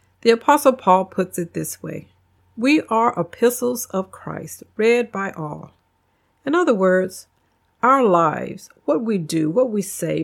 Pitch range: 175-240 Hz